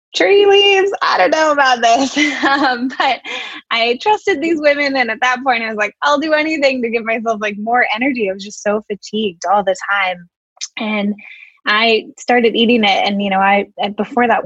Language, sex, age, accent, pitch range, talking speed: English, female, 10-29, American, 195-265 Hz, 200 wpm